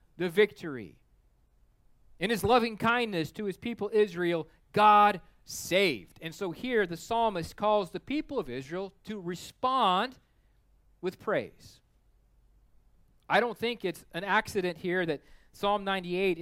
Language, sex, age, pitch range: English, male, 30-49, 180-225 Hz